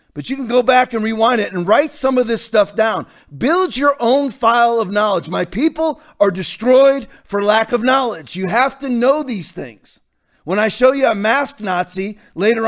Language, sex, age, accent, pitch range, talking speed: English, male, 40-59, American, 195-255 Hz, 205 wpm